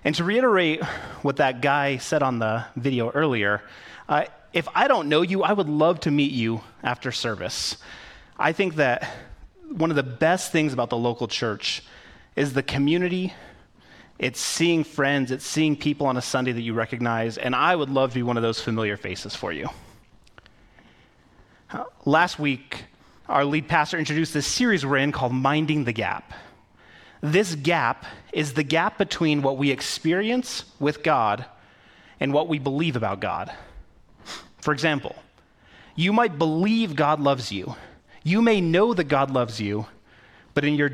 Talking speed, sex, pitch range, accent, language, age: 165 wpm, male, 120-165 Hz, American, English, 30-49